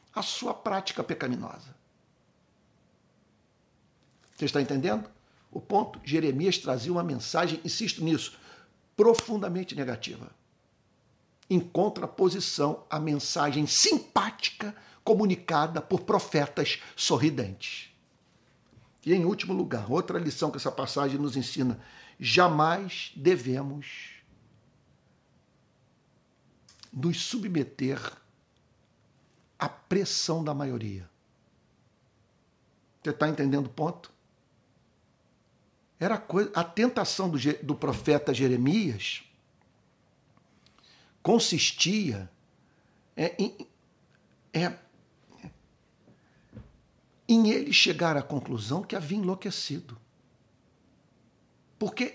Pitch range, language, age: 140-195 Hz, Portuguese, 60-79